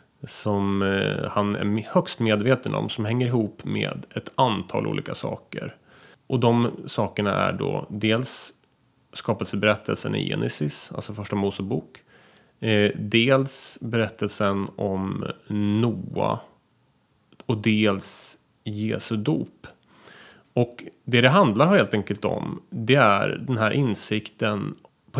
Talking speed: 110 wpm